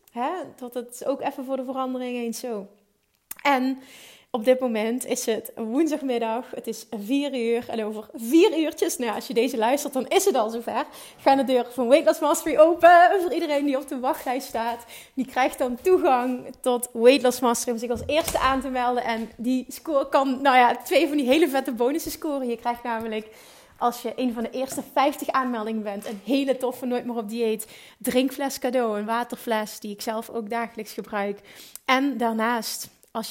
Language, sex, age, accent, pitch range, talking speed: Dutch, female, 30-49, Dutch, 225-270 Hz, 195 wpm